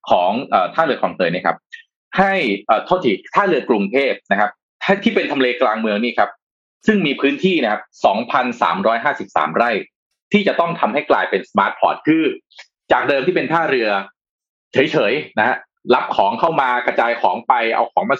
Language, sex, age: Thai, male, 20-39